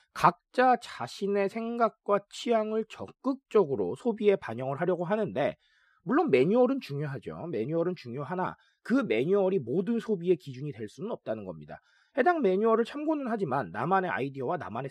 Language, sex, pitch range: Korean, male, 155-220 Hz